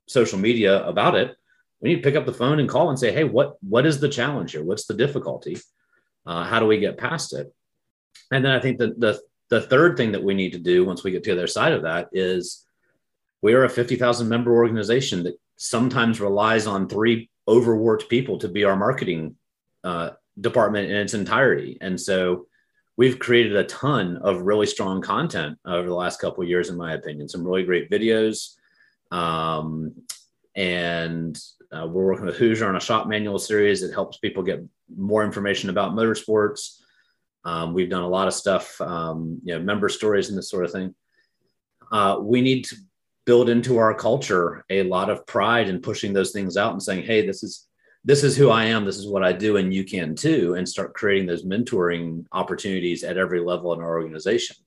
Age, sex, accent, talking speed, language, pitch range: 30-49, male, American, 205 wpm, English, 90-120 Hz